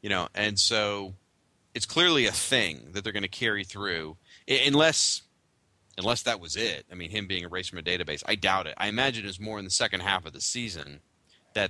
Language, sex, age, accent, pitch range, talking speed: English, male, 30-49, American, 90-115 Hz, 215 wpm